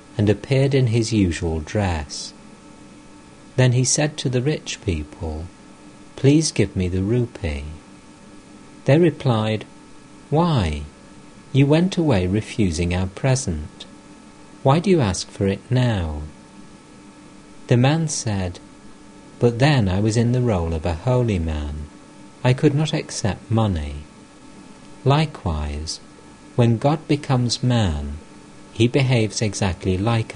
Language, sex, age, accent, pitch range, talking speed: English, male, 50-69, British, 85-110 Hz, 125 wpm